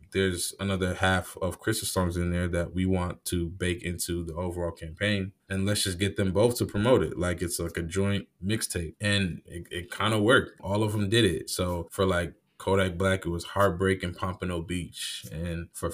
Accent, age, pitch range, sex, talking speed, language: American, 20-39, 85-100 Hz, male, 205 wpm, English